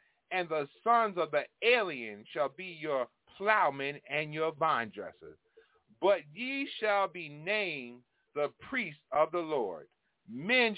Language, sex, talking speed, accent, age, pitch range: English, male, 140 wpm, American, 40-59, 155-225 Hz